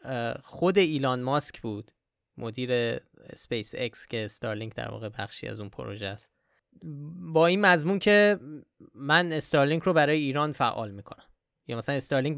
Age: 20-39